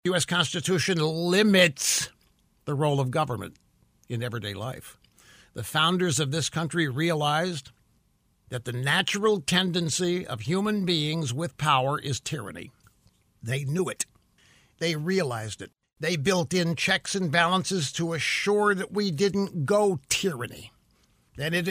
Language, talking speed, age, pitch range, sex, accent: English, 135 wpm, 60-79, 140-205 Hz, male, American